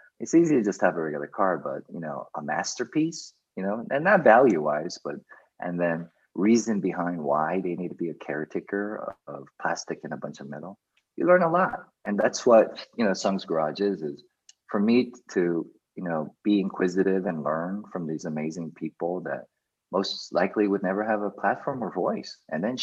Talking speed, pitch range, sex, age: 200 wpm, 85-115 Hz, male, 30-49